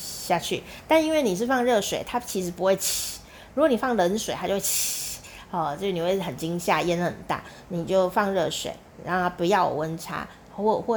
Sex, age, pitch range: female, 30-49, 175-225 Hz